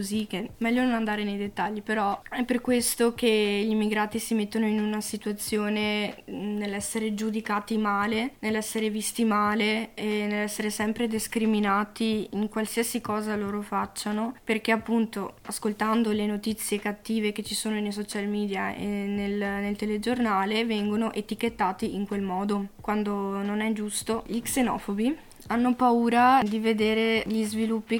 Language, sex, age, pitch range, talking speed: Italian, female, 20-39, 205-220 Hz, 140 wpm